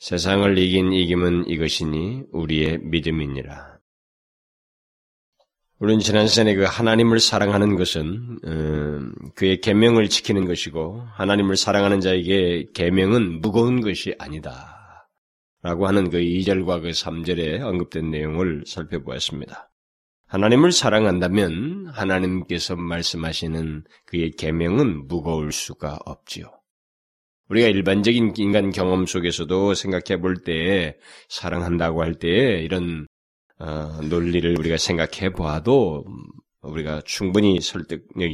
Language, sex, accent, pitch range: Korean, male, native, 80-100 Hz